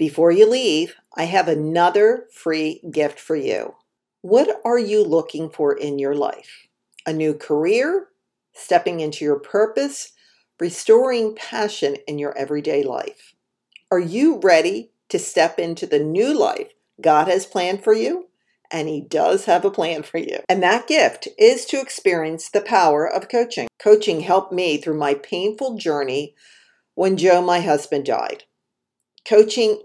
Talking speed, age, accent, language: 155 wpm, 50-69, American, English